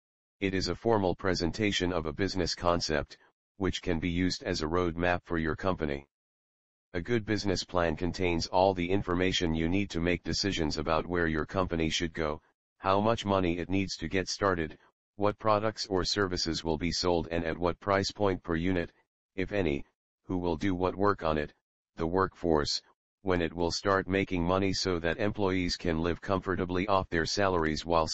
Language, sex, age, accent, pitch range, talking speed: English, male, 40-59, American, 80-95 Hz, 185 wpm